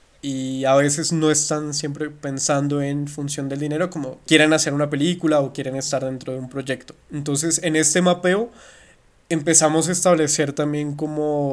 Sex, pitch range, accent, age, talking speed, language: male, 135-155 Hz, Colombian, 20-39, 165 wpm, Spanish